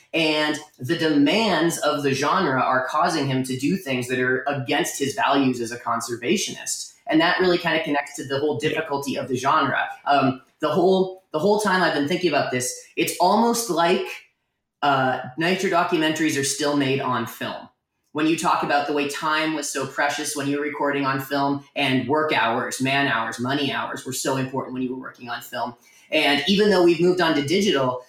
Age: 30-49